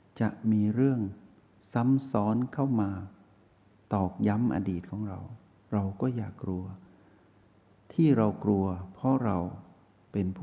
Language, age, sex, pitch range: Thai, 60-79, male, 95-115 Hz